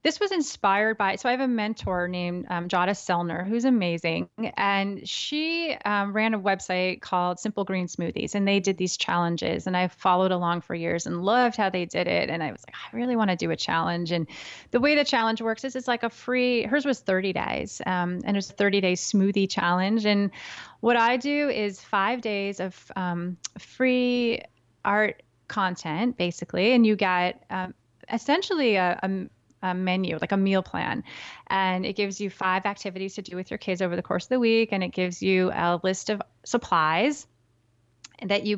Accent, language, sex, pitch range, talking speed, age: American, English, female, 180-230 Hz, 200 wpm, 30-49